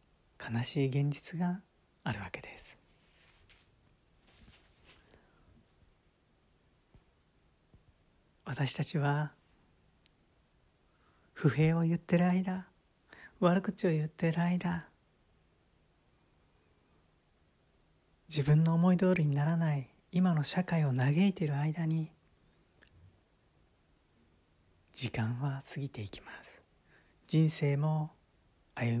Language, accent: Japanese, native